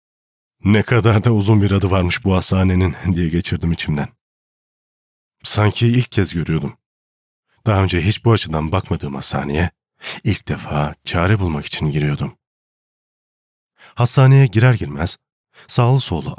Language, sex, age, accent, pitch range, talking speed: Turkish, male, 40-59, native, 80-115 Hz, 125 wpm